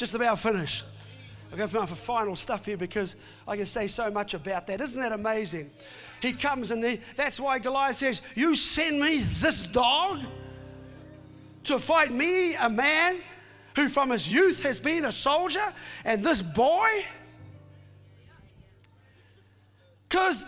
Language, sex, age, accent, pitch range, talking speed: English, male, 40-59, Australian, 210-315 Hz, 150 wpm